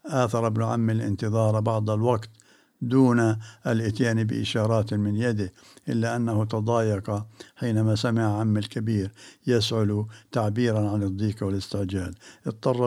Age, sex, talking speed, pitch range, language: 60-79, male, 110 wpm, 105-120 Hz, Arabic